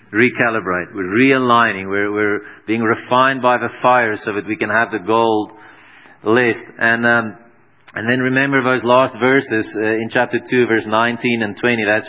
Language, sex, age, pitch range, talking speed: English, male, 30-49, 105-125 Hz, 175 wpm